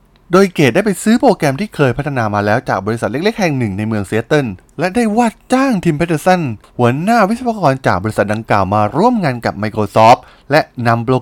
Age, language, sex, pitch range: 20-39, Thai, male, 110-165 Hz